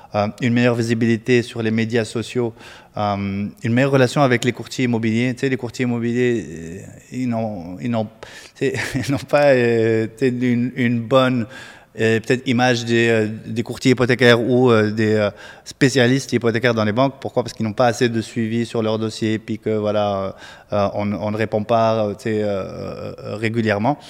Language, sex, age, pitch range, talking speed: French, male, 20-39, 110-120 Hz, 170 wpm